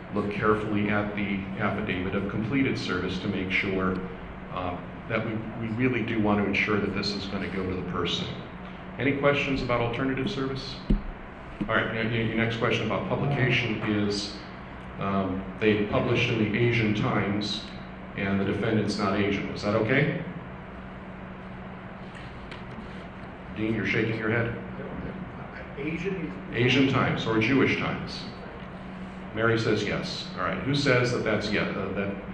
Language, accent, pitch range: English, American, 100-115 Hz